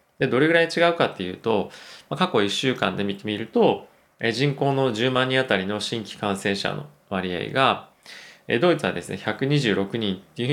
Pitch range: 100-135 Hz